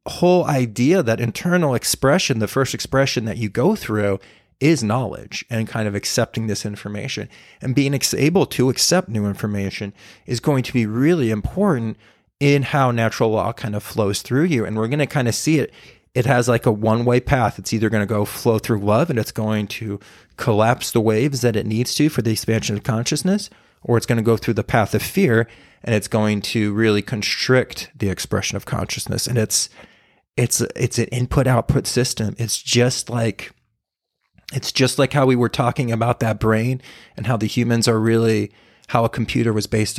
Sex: male